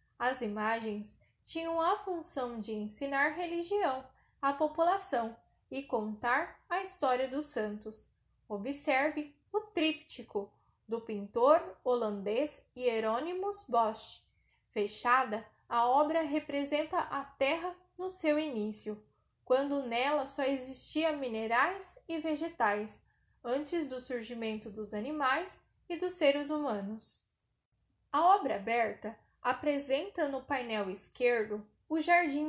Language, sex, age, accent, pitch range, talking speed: Portuguese, female, 10-29, Brazilian, 220-310 Hz, 105 wpm